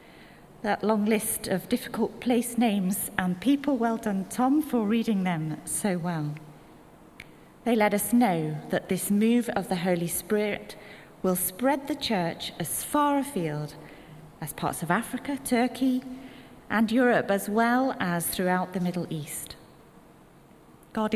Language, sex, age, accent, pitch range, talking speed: English, female, 30-49, British, 165-240 Hz, 140 wpm